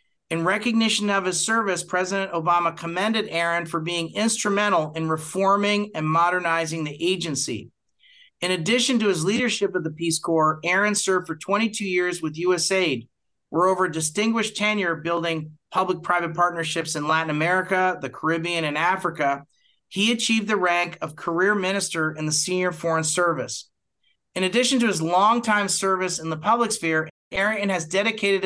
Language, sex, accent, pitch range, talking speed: English, male, American, 160-195 Hz, 155 wpm